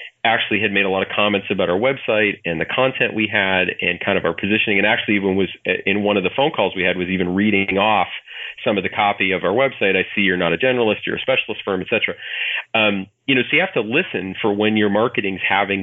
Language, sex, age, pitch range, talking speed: English, male, 30-49, 95-110 Hz, 260 wpm